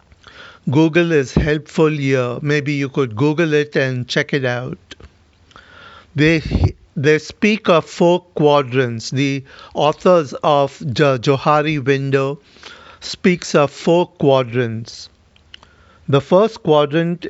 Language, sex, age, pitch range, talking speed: Hindi, male, 60-79, 130-155 Hz, 110 wpm